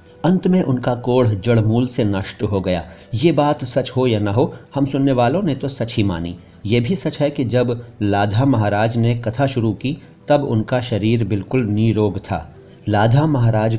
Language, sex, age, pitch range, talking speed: Hindi, male, 40-59, 105-130 Hz, 185 wpm